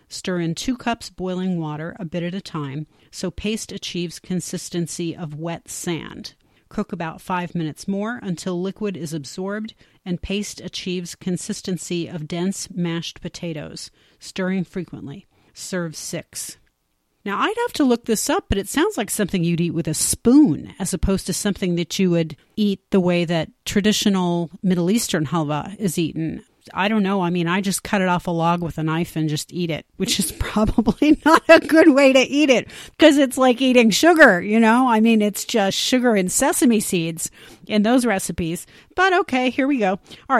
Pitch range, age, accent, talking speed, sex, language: 170-225 Hz, 40-59, American, 185 wpm, female, English